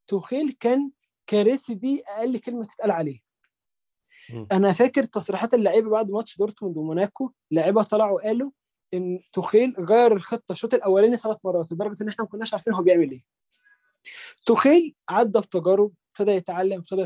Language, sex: Arabic, male